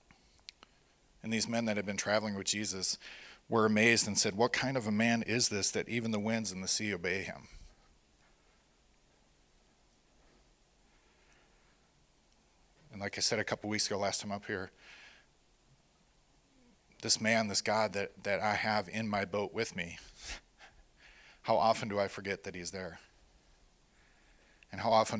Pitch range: 95-110 Hz